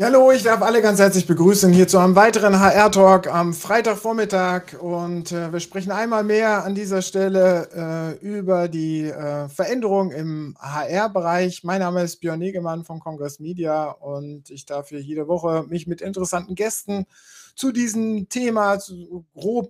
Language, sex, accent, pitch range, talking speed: German, male, German, 165-195 Hz, 160 wpm